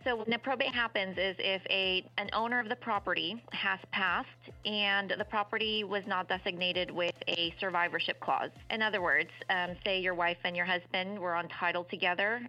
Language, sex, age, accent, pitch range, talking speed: English, female, 30-49, American, 175-205 Hz, 185 wpm